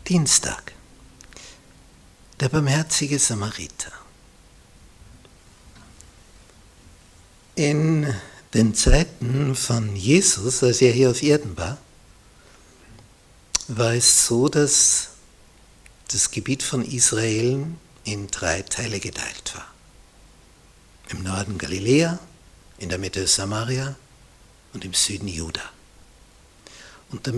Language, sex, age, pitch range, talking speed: German, male, 60-79, 95-130 Hz, 90 wpm